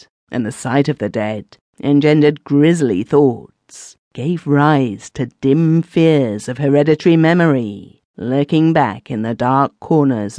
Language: English